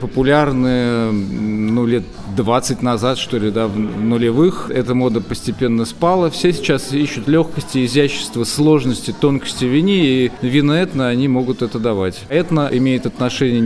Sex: male